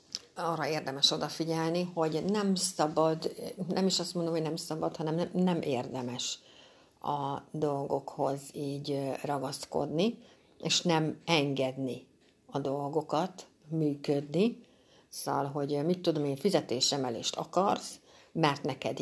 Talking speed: 110 wpm